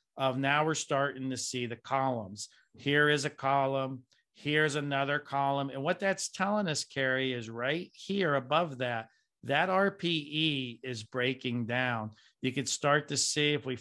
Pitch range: 125-145 Hz